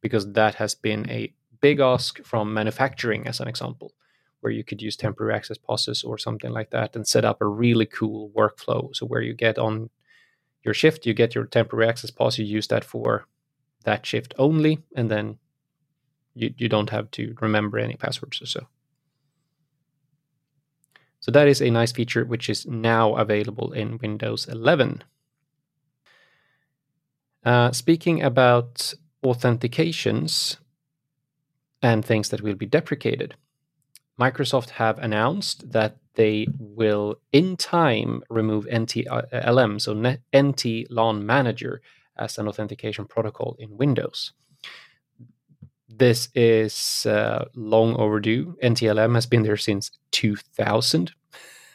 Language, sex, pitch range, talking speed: English, male, 110-145 Hz, 135 wpm